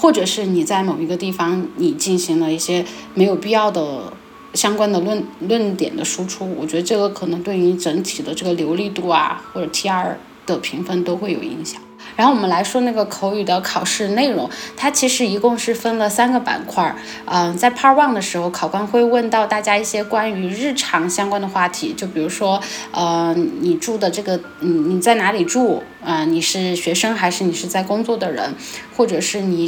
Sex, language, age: female, Chinese, 10-29